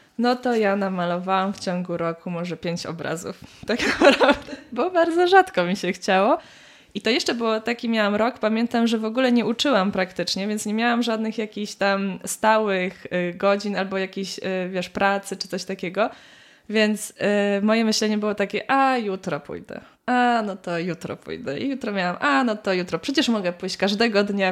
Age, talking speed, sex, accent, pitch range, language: 20-39, 175 wpm, female, native, 190-235 Hz, Polish